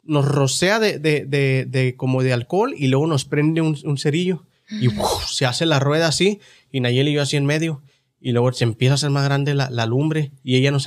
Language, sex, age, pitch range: Spanish, male, 30-49, 135-185 Hz